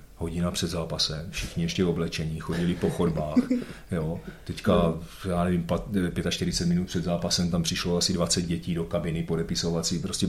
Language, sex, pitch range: Czech, male, 85-90 Hz